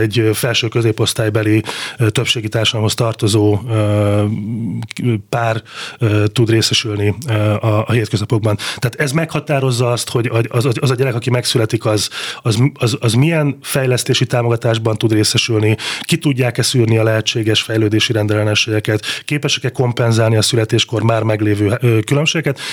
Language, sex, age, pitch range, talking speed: Hungarian, male, 30-49, 110-130 Hz, 110 wpm